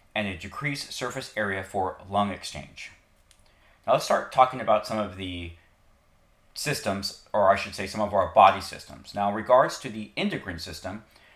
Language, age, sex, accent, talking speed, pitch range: English, 40-59, male, American, 175 wpm, 95-115 Hz